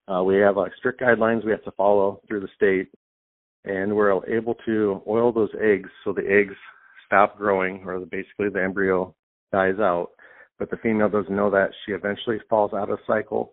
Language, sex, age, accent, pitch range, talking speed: English, male, 50-69, American, 95-105 Hz, 195 wpm